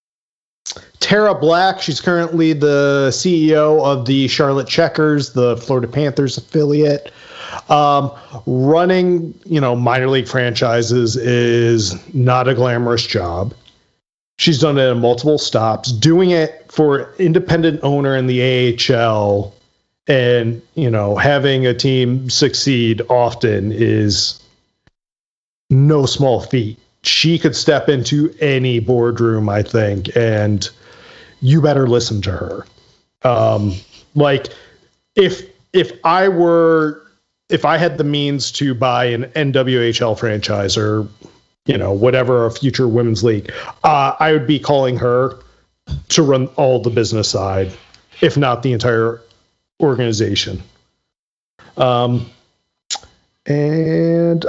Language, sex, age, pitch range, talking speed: English, male, 40-59, 115-150 Hz, 120 wpm